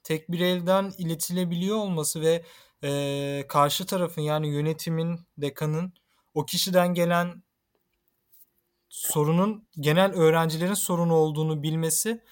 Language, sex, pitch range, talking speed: Turkish, male, 140-175 Hz, 100 wpm